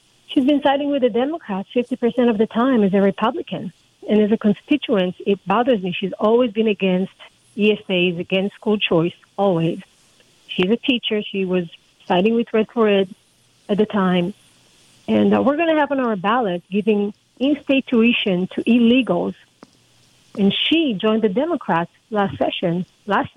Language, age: English, 40-59